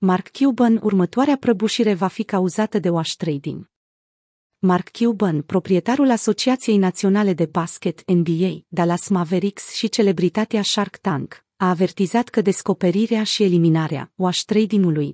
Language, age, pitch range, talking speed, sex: Romanian, 30-49, 175-220 Hz, 125 wpm, female